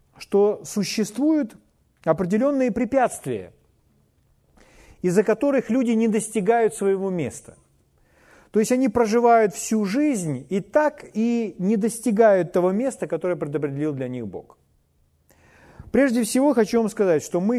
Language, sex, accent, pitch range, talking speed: Russian, male, native, 155-220 Hz, 125 wpm